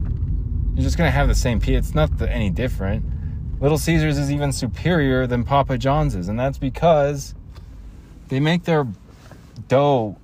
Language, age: English, 20-39